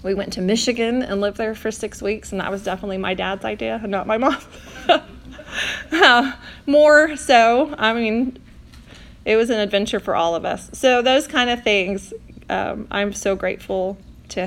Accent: American